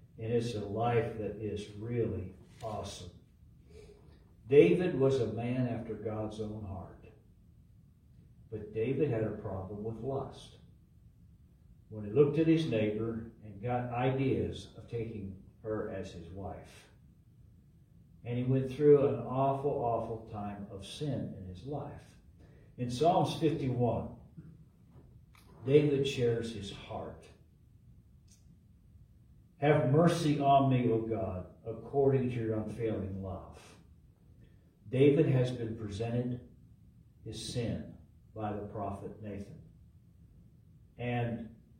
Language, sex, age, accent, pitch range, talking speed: English, male, 60-79, American, 100-130 Hz, 115 wpm